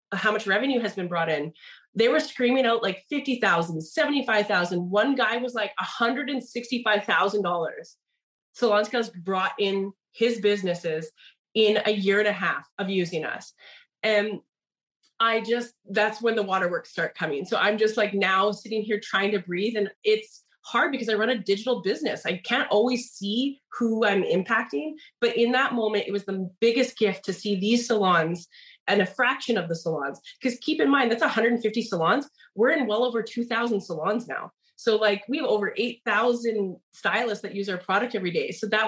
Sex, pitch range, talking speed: female, 190-235 Hz, 180 wpm